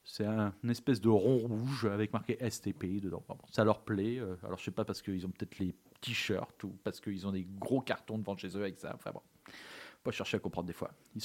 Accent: French